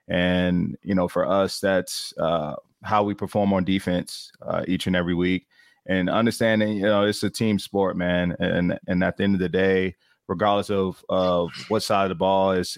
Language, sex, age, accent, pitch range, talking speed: English, male, 30-49, American, 90-100 Hz, 200 wpm